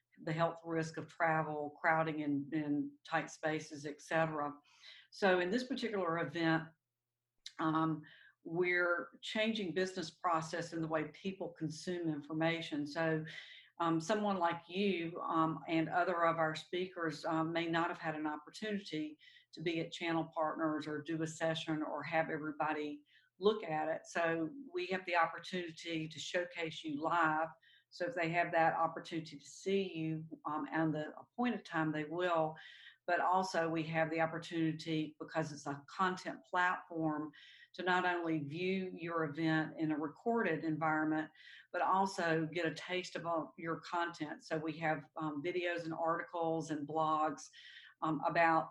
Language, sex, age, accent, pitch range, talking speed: English, female, 50-69, American, 155-175 Hz, 155 wpm